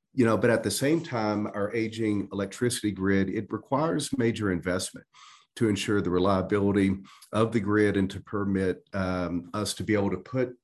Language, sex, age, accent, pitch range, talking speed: English, male, 40-59, American, 95-110 Hz, 180 wpm